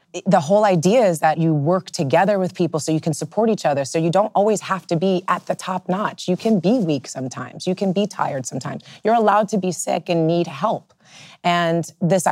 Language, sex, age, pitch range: English, female, 30-49, 165-200 Hz